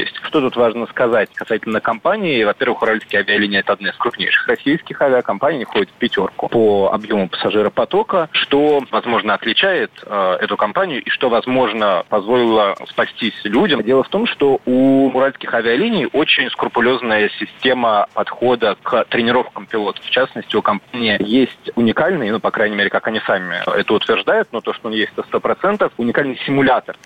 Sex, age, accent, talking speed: male, 30-49, native, 160 wpm